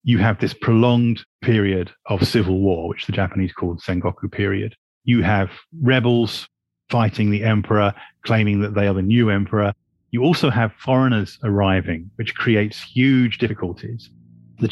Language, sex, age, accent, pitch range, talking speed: English, male, 30-49, British, 95-120 Hz, 150 wpm